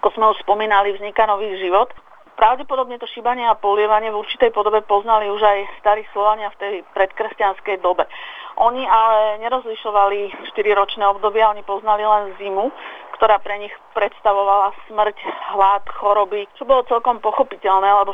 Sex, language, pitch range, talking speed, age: female, Slovak, 200-220 Hz, 145 wpm, 40-59